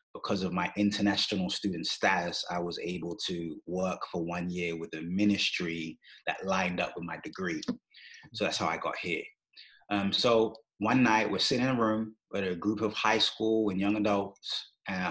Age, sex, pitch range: 30-49, male, 95-110 Hz